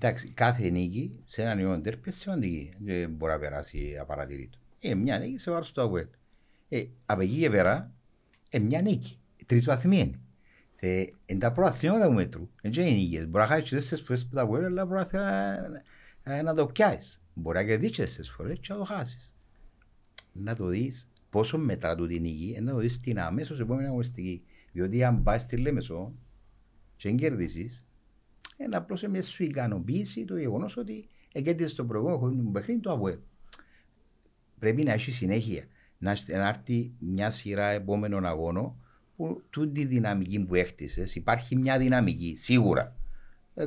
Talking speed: 115 wpm